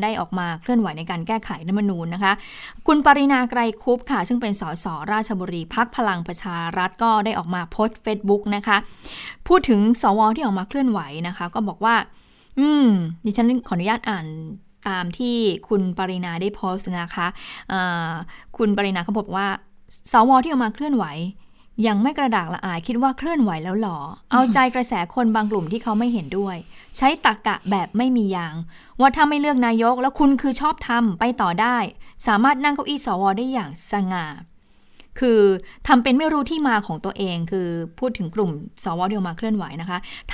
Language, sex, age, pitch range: Thai, female, 20-39, 185-250 Hz